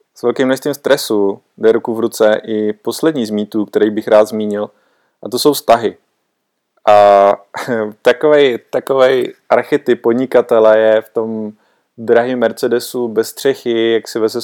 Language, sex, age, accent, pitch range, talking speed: Czech, male, 20-39, native, 105-120 Hz, 140 wpm